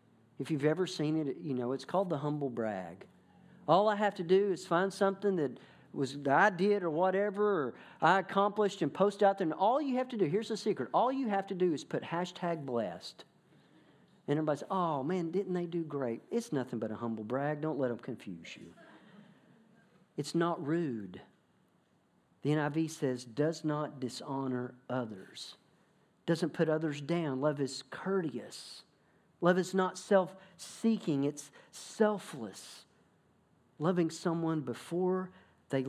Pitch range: 135-185 Hz